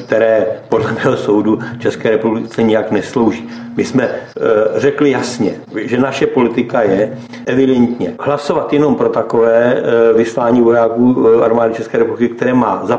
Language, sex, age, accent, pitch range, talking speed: Czech, male, 60-79, native, 105-130 Hz, 140 wpm